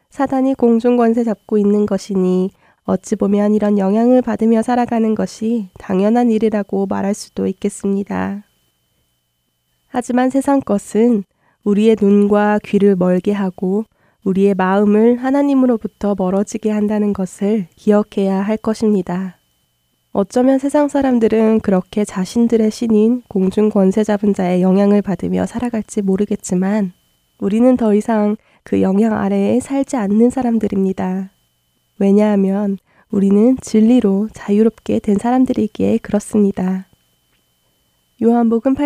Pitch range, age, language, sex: 190-230 Hz, 20-39, Korean, female